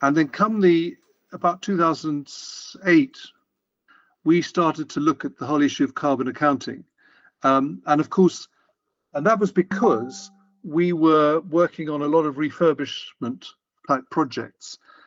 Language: English